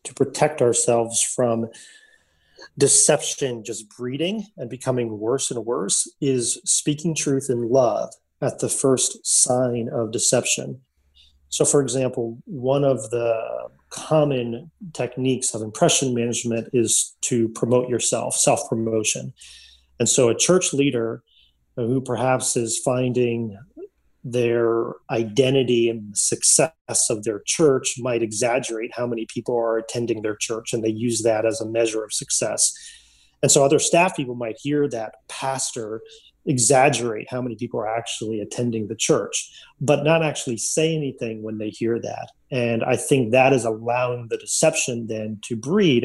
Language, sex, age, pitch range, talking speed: English, male, 30-49, 115-135 Hz, 145 wpm